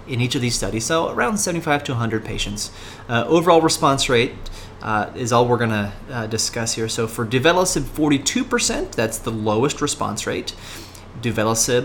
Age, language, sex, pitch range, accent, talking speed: 30-49, English, male, 105-130 Hz, American, 165 wpm